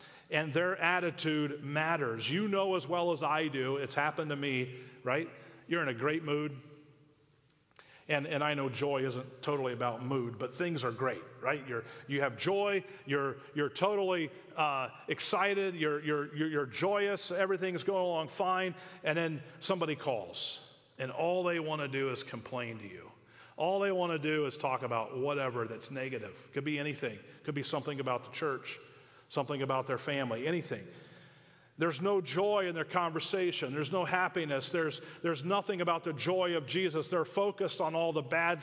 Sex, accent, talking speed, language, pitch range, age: male, American, 175 wpm, English, 135-175 Hz, 40-59